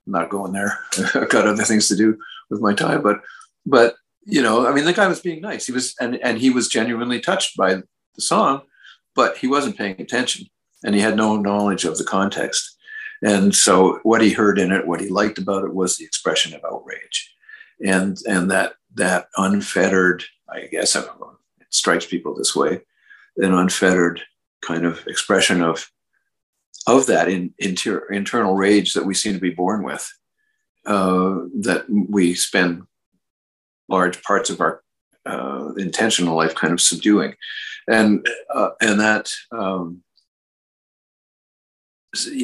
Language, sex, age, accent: English, male, 50-69, American